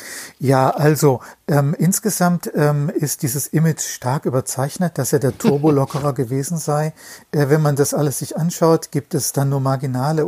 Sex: male